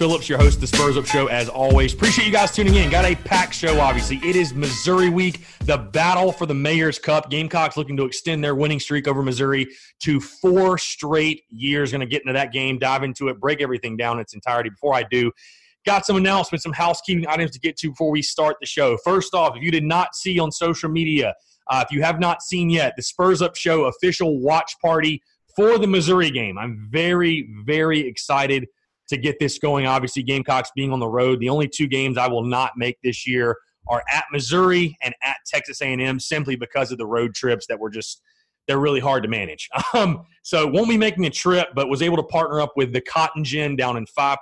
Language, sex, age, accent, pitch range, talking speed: English, male, 30-49, American, 130-165 Hz, 225 wpm